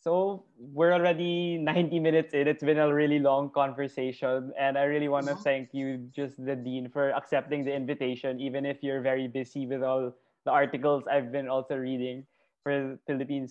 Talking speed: 180 wpm